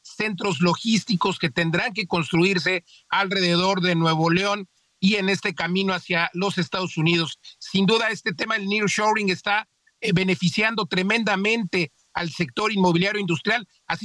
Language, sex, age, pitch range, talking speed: Spanish, male, 50-69, 175-215 Hz, 135 wpm